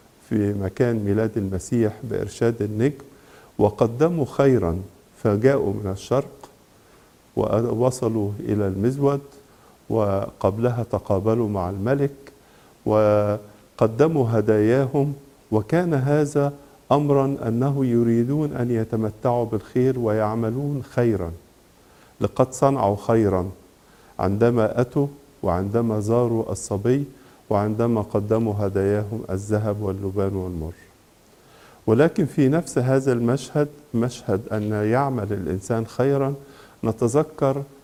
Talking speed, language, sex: 85 wpm, English, male